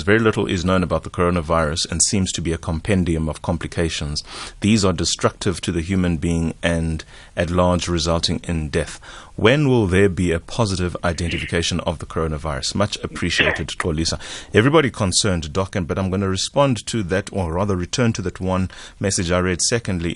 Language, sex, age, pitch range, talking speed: English, male, 30-49, 85-100 Hz, 180 wpm